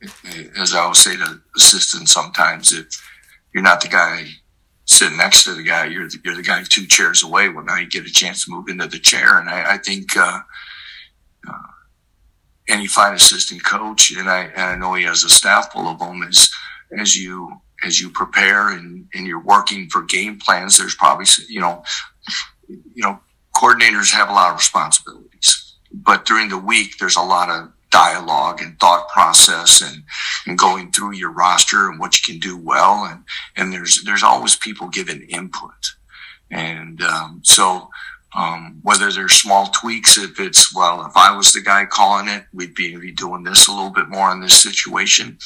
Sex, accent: male, American